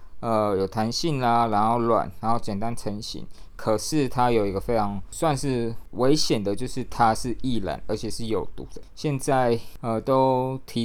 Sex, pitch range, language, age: male, 105-130 Hz, Chinese, 20-39